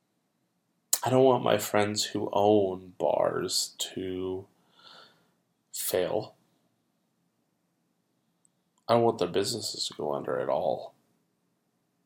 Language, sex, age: English, male, 20-39